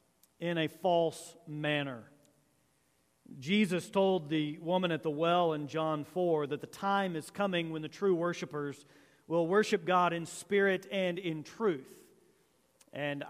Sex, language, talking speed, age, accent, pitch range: male, English, 145 wpm, 40-59, American, 150-190 Hz